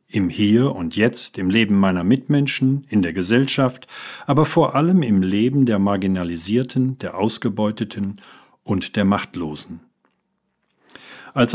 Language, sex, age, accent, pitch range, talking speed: German, male, 50-69, German, 100-125 Hz, 125 wpm